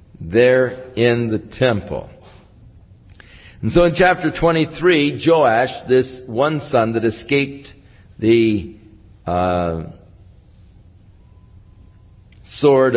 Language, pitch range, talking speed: English, 95-125 Hz, 85 wpm